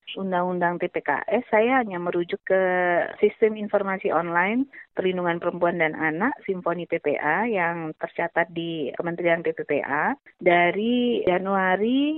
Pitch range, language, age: 170-230 Hz, Indonesian, 30-49